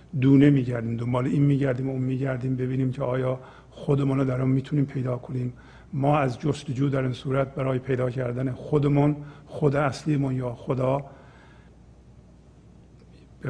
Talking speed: 140 wpm